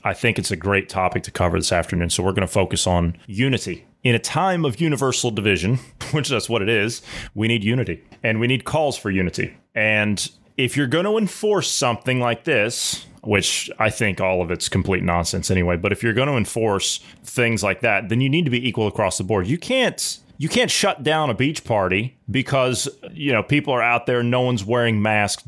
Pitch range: 105-140 Hz